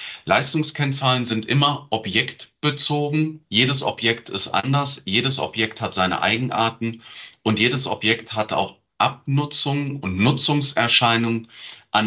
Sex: male